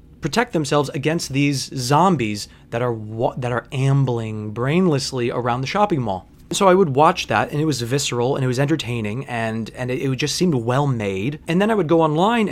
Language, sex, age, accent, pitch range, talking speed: English, male, 20-39, American, 130-170 Hz, 200 wpm